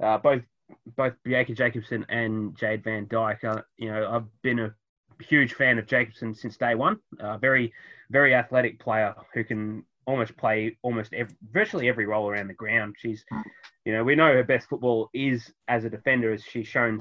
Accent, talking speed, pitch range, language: Australian, 190 wpm, 115-140 Hz, English